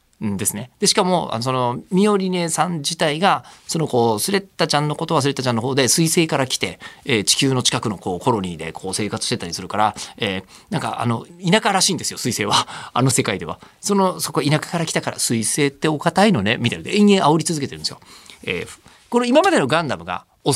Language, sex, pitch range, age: Japanese, male, 115-185 Hz, 40-59